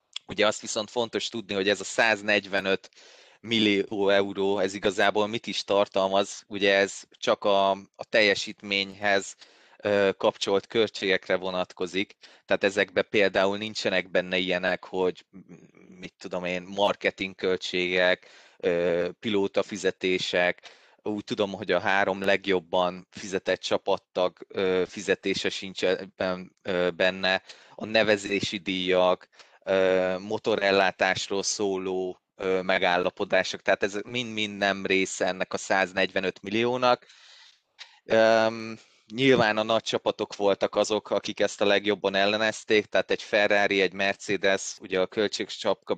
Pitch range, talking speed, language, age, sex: 95-105 Hz, 105 wpm, Hungarian, 20-39, male